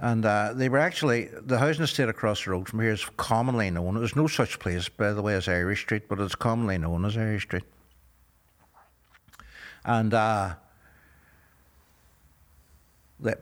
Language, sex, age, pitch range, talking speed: English, male, 60-79, 95-115 Hz, 160 wpm